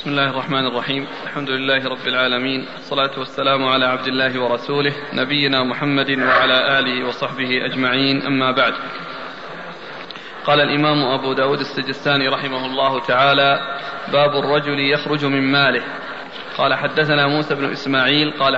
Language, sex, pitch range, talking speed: Arabic, male, 135-145 Hz, 130 wpm